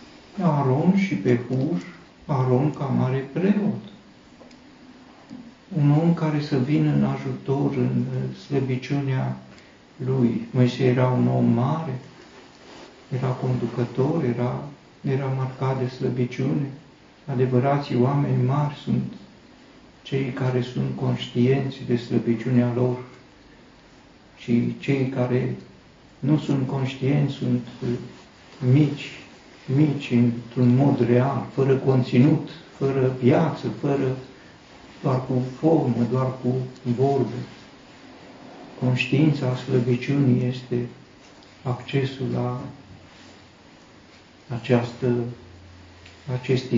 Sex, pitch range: male, 125-145 Hz